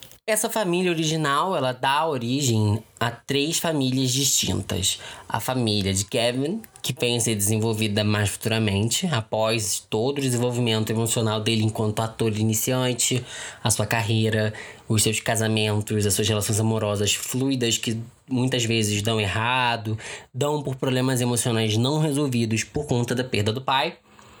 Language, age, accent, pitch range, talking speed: Portuguese, 10-29, Brazilian, 110-145 Hz, 145 wpm